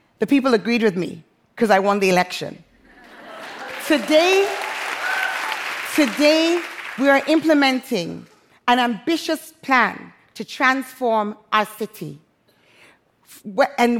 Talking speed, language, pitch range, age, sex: 100 wpm, English, 225-290 Hz, 40-59, female